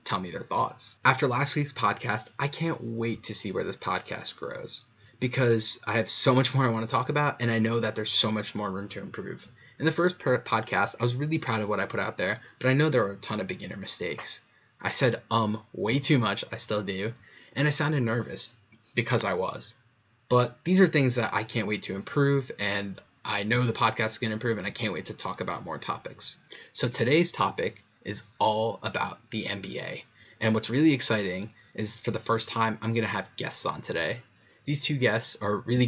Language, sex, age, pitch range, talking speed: English, male, 20-39, 110-125 Hz, 220 wpm